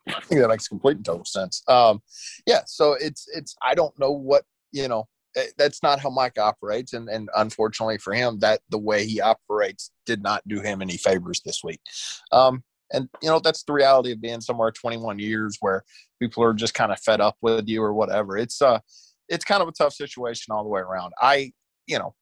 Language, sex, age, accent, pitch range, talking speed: English, male, 20-39, American, 105-130 Hz, 220 wpm